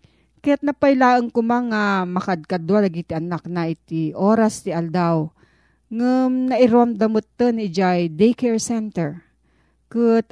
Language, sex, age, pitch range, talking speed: Filipino, female, 40-59, 170-225 Hz, 100 wpm